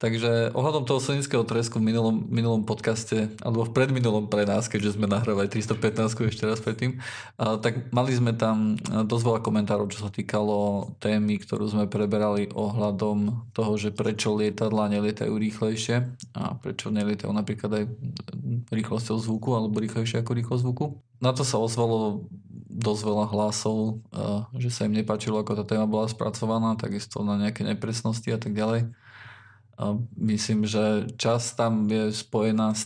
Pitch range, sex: 105-115 Hz, male